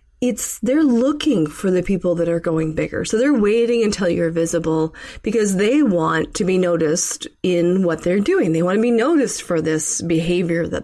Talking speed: 195 wpm